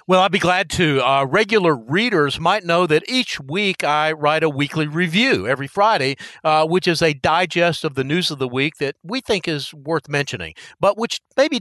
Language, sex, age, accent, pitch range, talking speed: English, male, 50-69, American, 140-185 Hz, 200 wpm